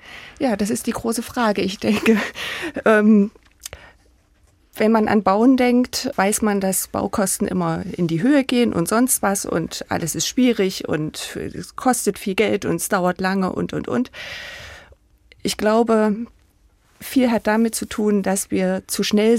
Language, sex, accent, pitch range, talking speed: German, female, German, 175-220 Hz, 160 wpm